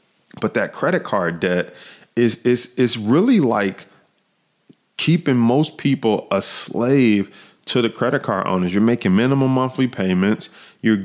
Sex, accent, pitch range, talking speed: male, American, 95-125 Hz, 140 wpm